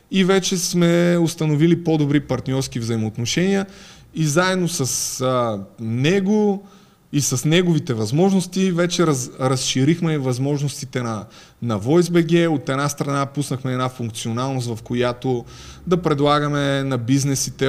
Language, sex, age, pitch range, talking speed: Bulgarian, male, 20-39, 125-160 Hz, 120 wpm